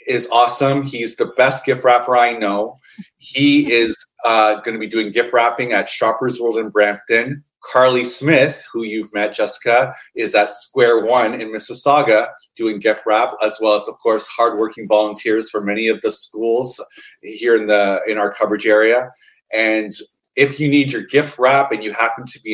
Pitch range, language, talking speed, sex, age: 105-135 Hz, English, 185 wpm, male, 30-49